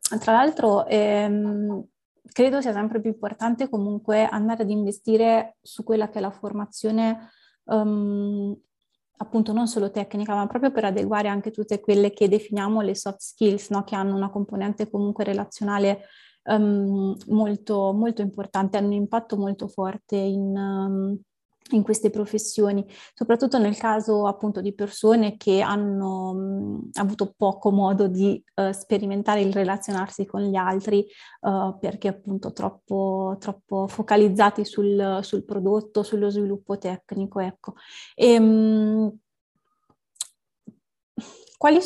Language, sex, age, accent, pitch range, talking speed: Italian, female, 30-49, native, 200-215 Hz, 115 wpm